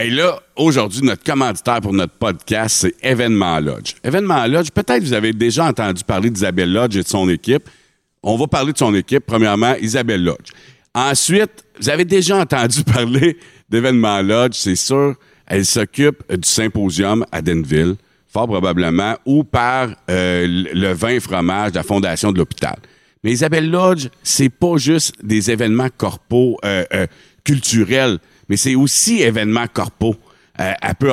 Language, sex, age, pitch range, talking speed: French, male, 50-69, 105-140 Hz, 165 wpm